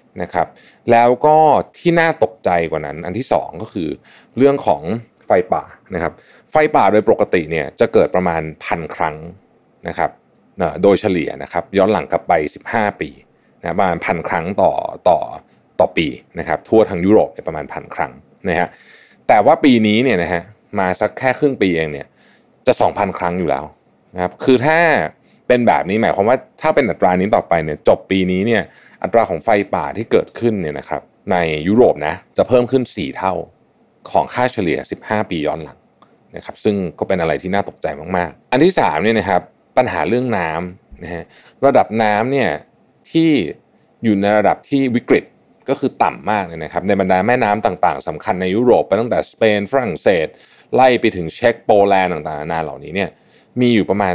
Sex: male